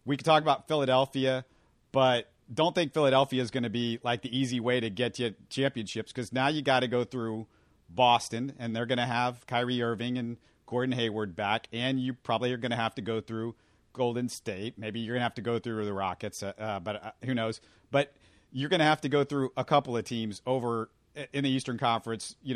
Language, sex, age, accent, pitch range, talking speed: English, male, 40-59, American, 115-130 Hz, 235 wpm